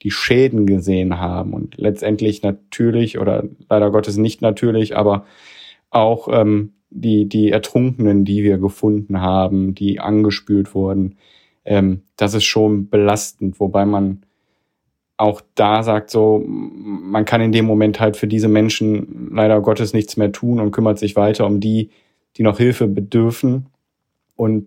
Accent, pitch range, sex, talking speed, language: German, 105-115 Hz, male, 150 wpm, German